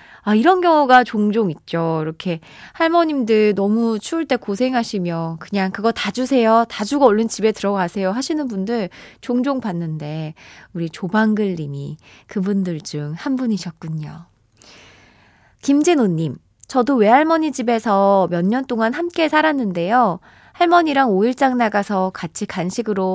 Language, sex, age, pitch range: Korean, female, 20-39, 175-255 Hz